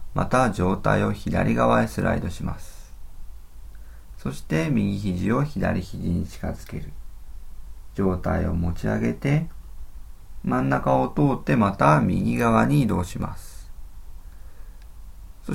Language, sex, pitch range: Japanese, male, 80-105 Hz